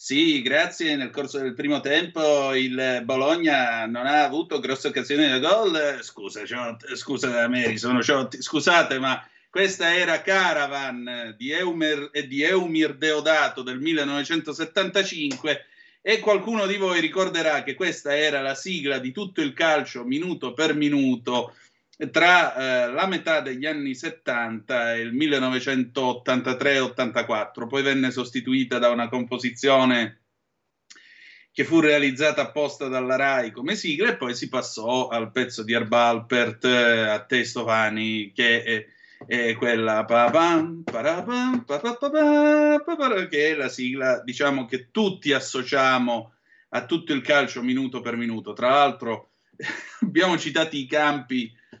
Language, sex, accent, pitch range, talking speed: Italian, male, native, 125-175 Hz, 125 wpm